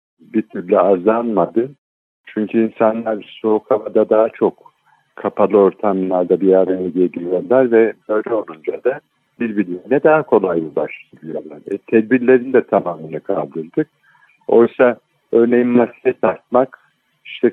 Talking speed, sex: 105 wpm, male